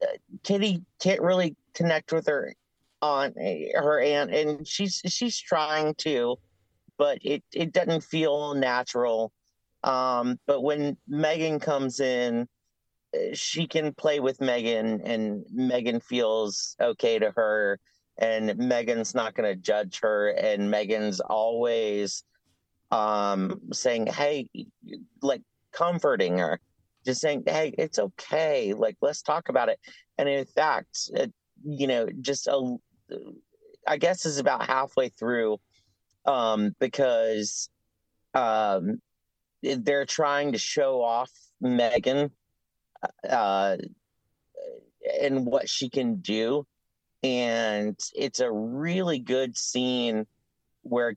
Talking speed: 110 wpm